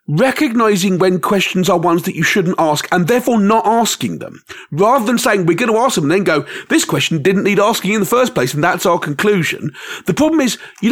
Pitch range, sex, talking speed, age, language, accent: 160-240 Hz, male, 230 wpm, 40-59, English, British